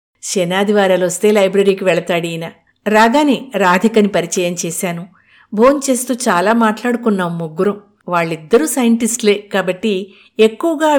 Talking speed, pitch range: 100 wpm, 180-225 Hz